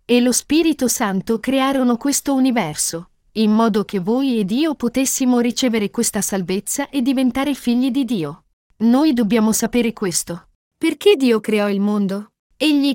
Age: 40-59